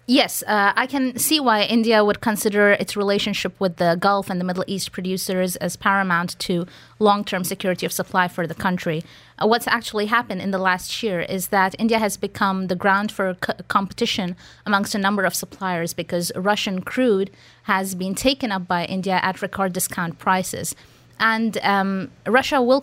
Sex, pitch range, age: female, 180-210 Hz, 20-39